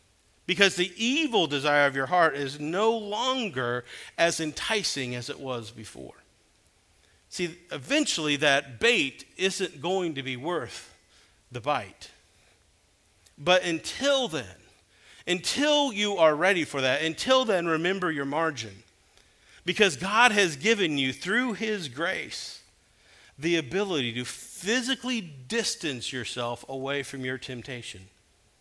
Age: 50-69